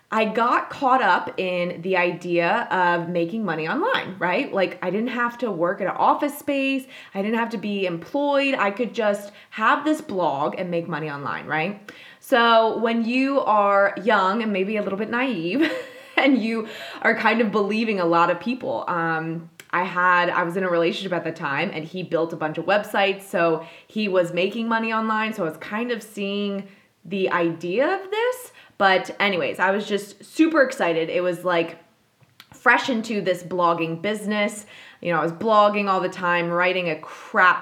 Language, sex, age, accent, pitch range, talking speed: English, female, 20-39, American, 170-225 Hz, 190 wpm